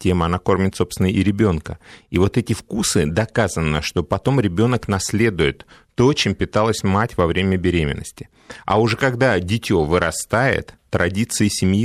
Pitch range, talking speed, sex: 95-120 Hz, 140 wpm, male